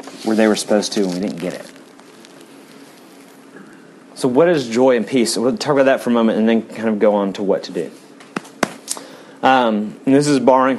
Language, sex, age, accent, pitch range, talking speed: English, male, 30-49, American, 110-145 Hz, 210 wpm